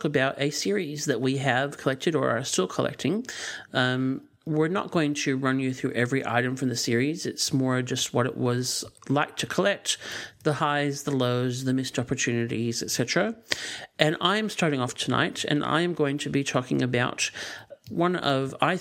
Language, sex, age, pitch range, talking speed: English, male, 50-69, 125-150 Hz, 180 wpm